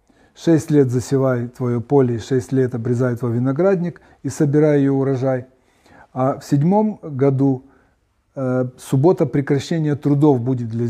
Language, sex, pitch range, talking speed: Russian, male, 125-150 Hz, 125 wpm